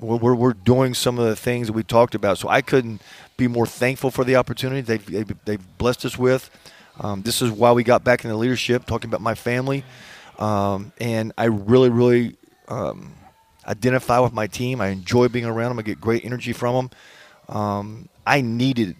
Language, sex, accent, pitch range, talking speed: English, male, American, 110-125 Hz, 200 wpm